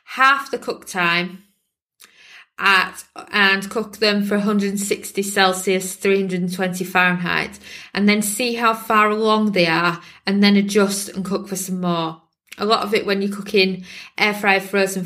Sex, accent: female, British